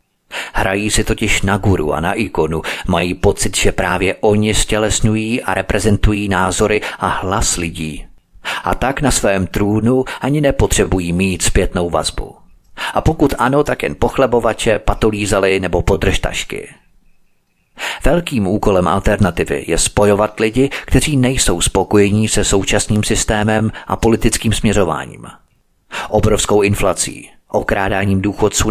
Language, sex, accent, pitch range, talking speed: Czech, male, native, 100-120 Hz, 120 wpm